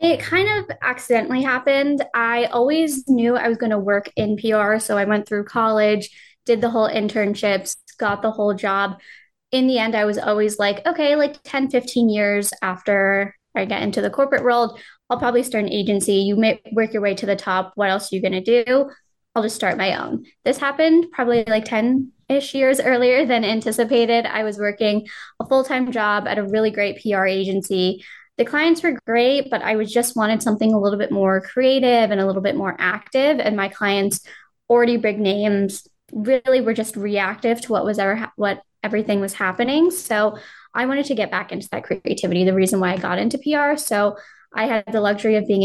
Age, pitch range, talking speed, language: 10-29, 200-240 Hz, 205 wpm, English